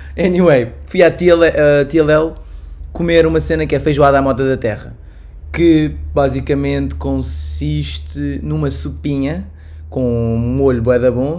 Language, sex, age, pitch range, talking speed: Portuguese, male, 20-39, 115-165 Hz, 130 wpm